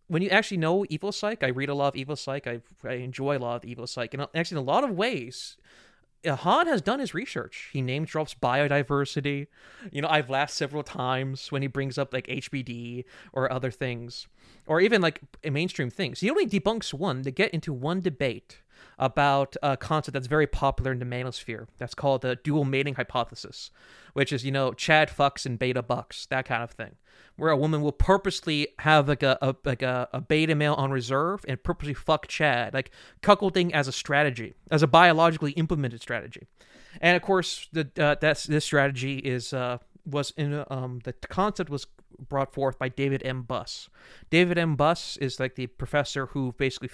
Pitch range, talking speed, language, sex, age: 130-160 Hz, 200 wpm, English, male, 30-49